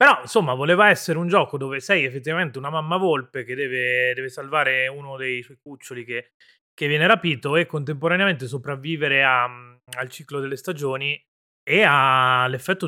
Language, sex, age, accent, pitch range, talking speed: Italian, male, 30-49, native, 125-160 Hz, 160 wpm